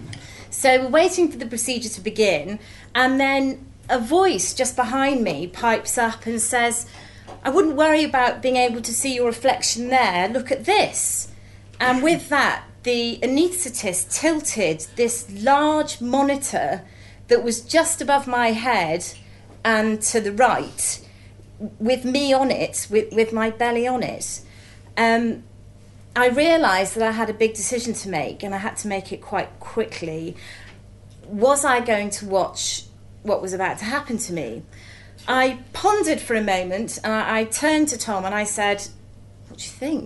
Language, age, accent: English, 30-49, British